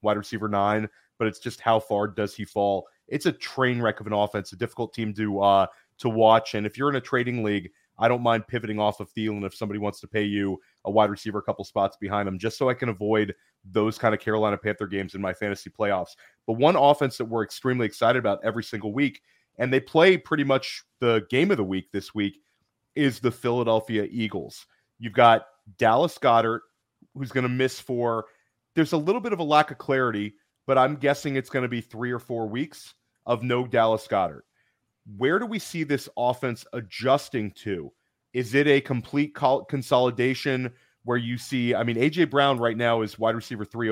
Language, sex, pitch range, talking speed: English, male, 105-130 Hz, 210 wpm